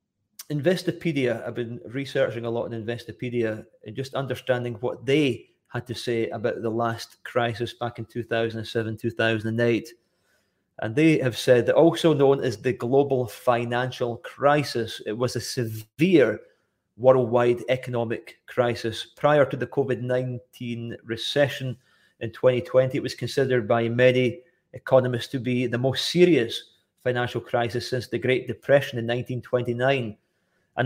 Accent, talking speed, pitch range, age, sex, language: British, 135 wpm, 120-140 Hz, 30-49, male, English